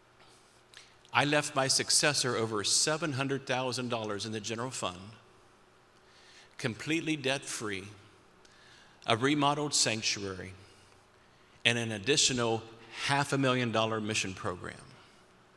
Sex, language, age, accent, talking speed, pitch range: male, English, 50-69, American, 95 wpm, 110-145 Hz